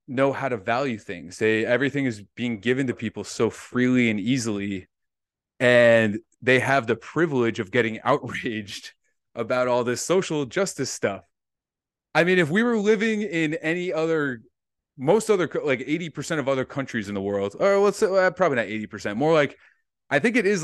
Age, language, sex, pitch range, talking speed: 30-49, English, male, 115-150 Hz, 175 wpm